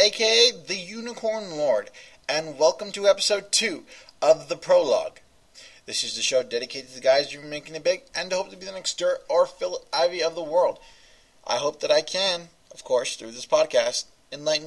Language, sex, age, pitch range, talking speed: English, male, 20-39, 125-195 Hz, 210 wpm